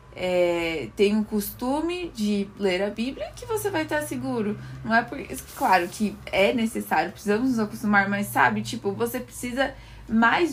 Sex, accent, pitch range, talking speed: female, Brazilian, 190-225 Hz, 160 wpm